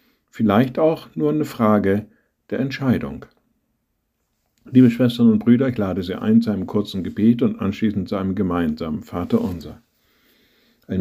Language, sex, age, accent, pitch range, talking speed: German, male, 50-69, German, 100-130 Hz, 140 wpm